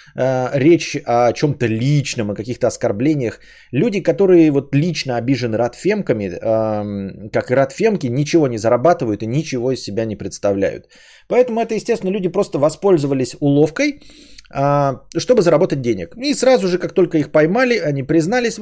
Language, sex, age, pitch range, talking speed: Bulgarian, male, 20-39, 125-175 Hz, 140 wpm